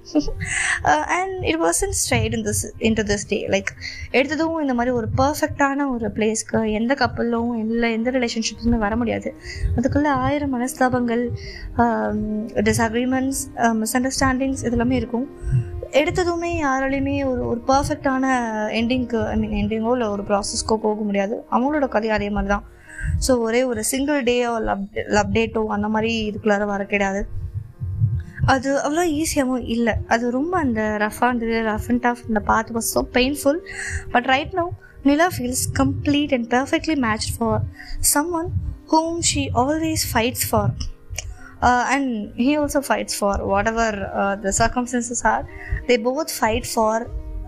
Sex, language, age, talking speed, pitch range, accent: female, Tamil, 20-39, 130 wpm, 215-270 Hz, native